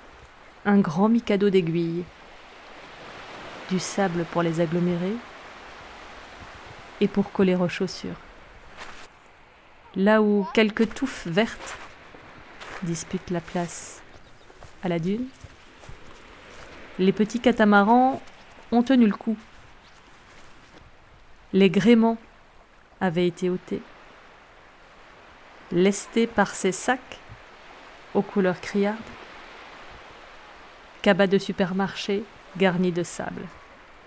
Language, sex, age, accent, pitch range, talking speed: French, female, 30-49, French, 185-220 Hz, 90 wpm